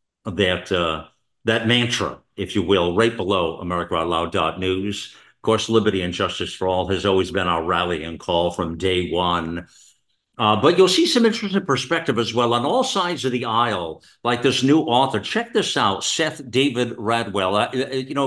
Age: 50-69